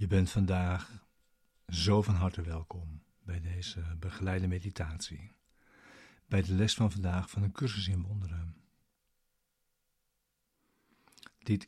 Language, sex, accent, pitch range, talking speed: Dutch, male, Dutch, 90-100 Hz, 115 wpm